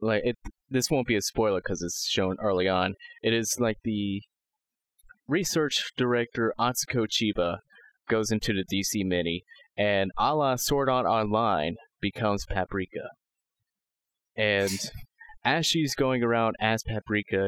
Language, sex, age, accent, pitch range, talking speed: English, male, 30-49, American, 100-135 Hz, 130 wpm